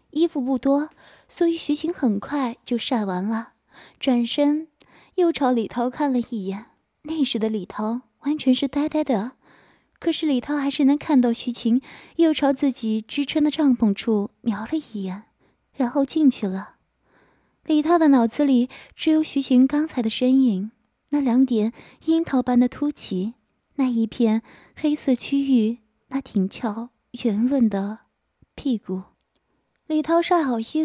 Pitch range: 225-285 Hz